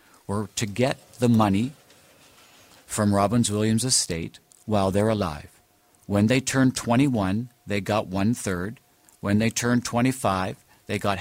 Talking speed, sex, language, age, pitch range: 135 wpm, male, English, 50-69, 100-125 Hz